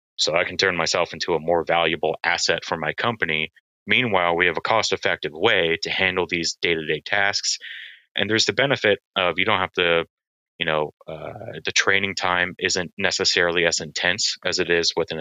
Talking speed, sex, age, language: 190 wpm, male, 30-49, English